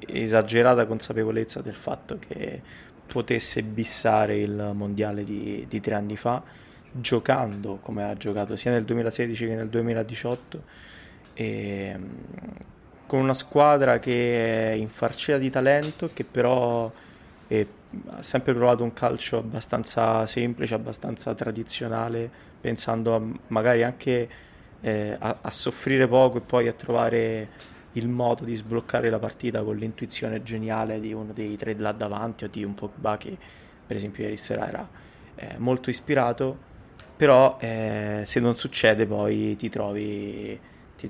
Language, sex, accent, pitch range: Italian, male, native, 105-120 Hz